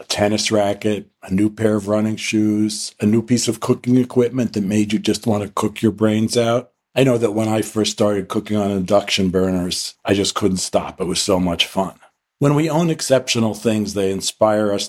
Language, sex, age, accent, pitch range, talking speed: English, male, 50-69, American, 95-115 Hz, 215 wpm